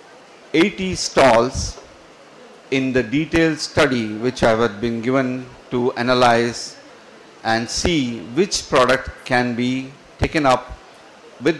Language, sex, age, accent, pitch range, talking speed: Kannada, male, 50-69, native, 120-150 Hz, 115 wpm